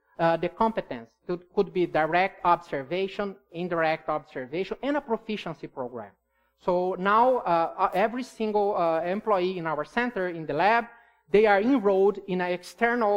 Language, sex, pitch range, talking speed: English, male, 165-215 Hz, 150 wpm